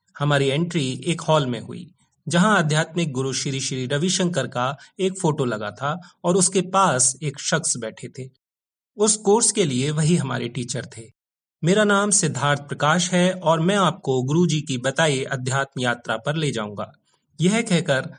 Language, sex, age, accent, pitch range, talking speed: Hindi, male, 40-59, native, 130-180 Hz, 125 wpm